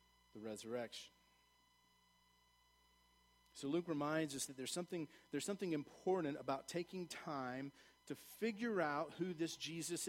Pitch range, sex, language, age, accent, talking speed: 140-185 Hz, male, English, 40-59, American, 125 wpm